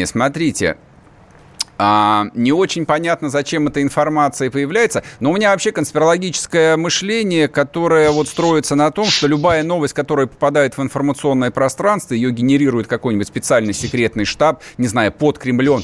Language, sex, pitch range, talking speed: Russian, male, 115-150 Hz, 140 wpm